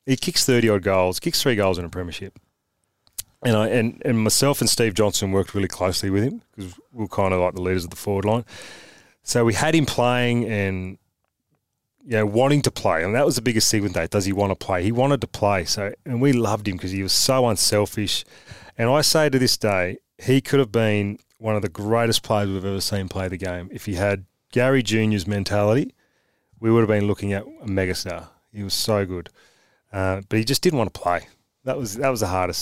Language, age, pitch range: English, 30-49, 100-120 Hz